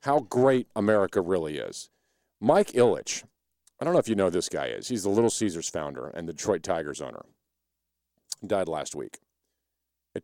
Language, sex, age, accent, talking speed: English, male, 50-69, American, 175 wpm